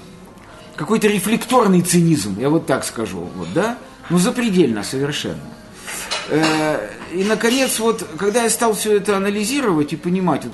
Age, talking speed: 50-69, 135 wpm